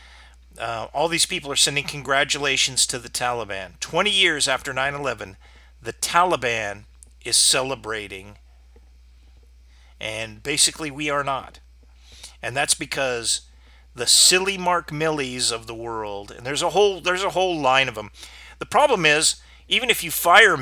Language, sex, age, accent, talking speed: English, male, 40-59, American, 145 wpm